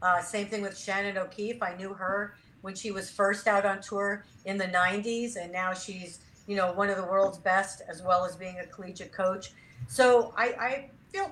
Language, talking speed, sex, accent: English, 210 wpm, female, American